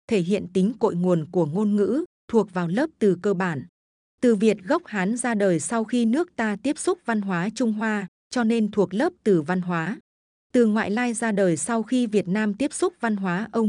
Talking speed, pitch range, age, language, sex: 225 wpm, 190-235 Hz, 20-39, Vietnamese, female